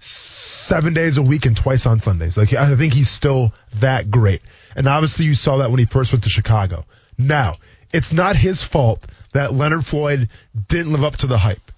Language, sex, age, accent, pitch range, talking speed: English, male, 20-39, American, 120-175 Hz, 205 wpm